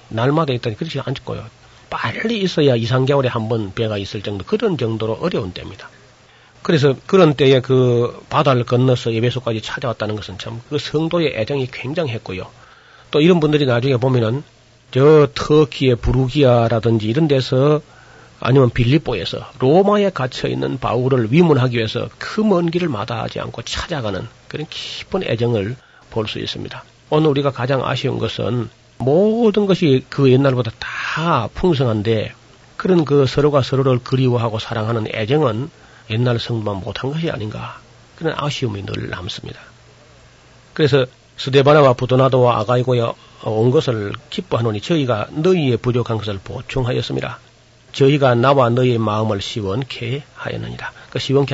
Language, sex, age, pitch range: Korean, male, 40-59, 115-140 Hz